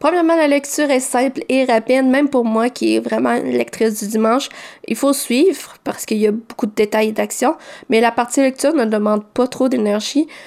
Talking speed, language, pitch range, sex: 220 wpm, French, 220-275 Hz, female